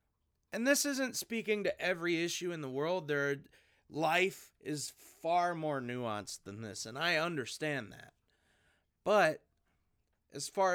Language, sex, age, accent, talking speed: English, male, 30-49, American, 140 wpm